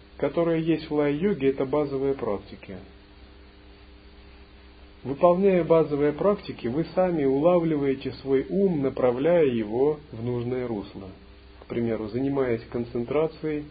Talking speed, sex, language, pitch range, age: 105 wpm, male, Russian, 115-160 Hz, 40-59